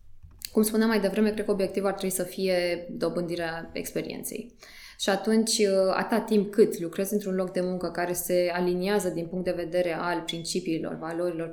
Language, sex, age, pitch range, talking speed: Romanian, female, 20-39, 170-205 Hz, 170 wpm